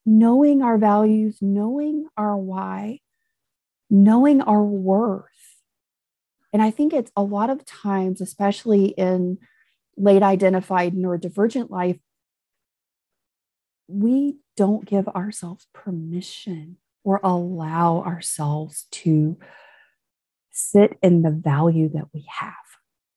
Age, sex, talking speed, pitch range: 40-59, female, 100 wpm, 170-215 Hz